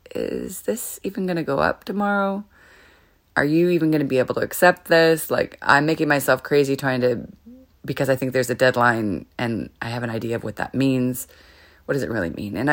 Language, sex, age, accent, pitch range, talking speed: English, female, 30-49, American, 110-150 Hz, 215 wpm